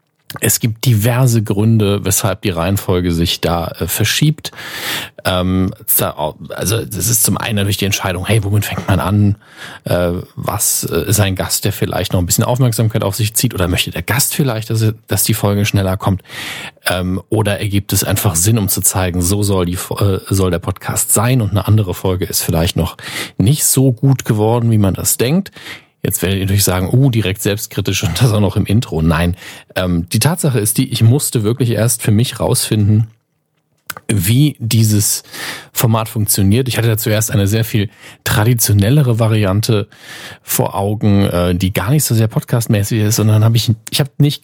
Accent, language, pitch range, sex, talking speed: German, German, 95-120 Hz, male, 190 wpm